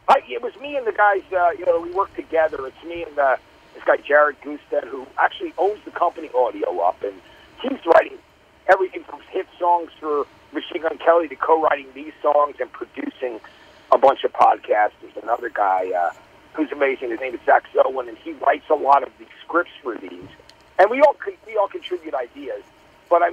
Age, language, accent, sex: 50-69, English, American, male